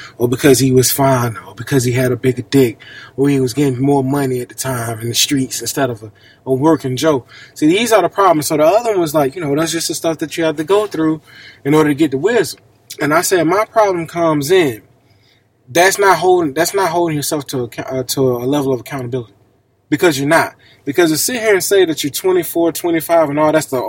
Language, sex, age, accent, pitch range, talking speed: English, male, 20-39, American, 135-220 Hz, 245 wpm